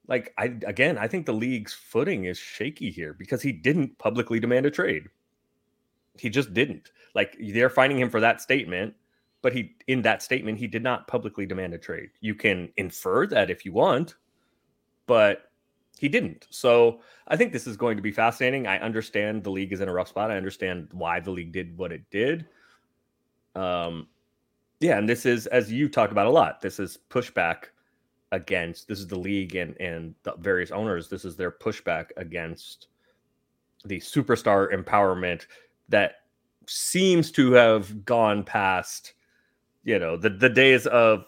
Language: English